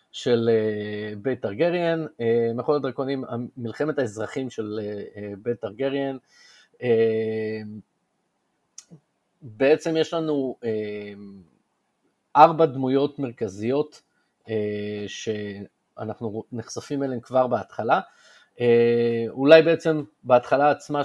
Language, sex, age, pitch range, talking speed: Hebrew, male, 30-49, 110-140 Hz, 90 wpm